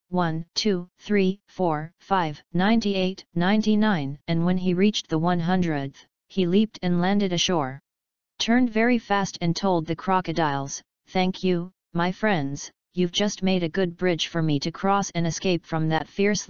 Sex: female